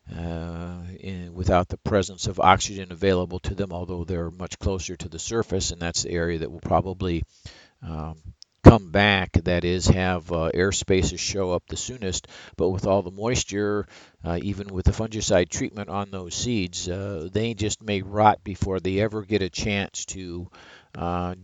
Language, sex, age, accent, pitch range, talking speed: English, male, 50-69, American, 90-105 Hz, 175 wpm